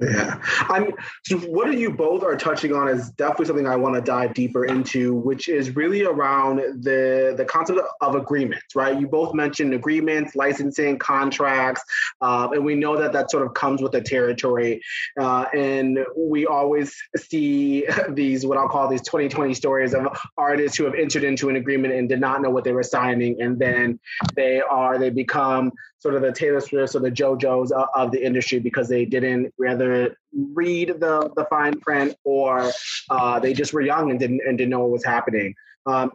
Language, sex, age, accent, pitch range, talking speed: English, male, 20-39, American, 125-150 Hz, 200 wpm